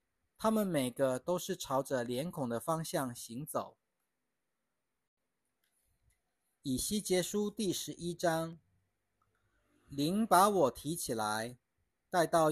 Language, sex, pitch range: Chinese, male, 120-175 Hz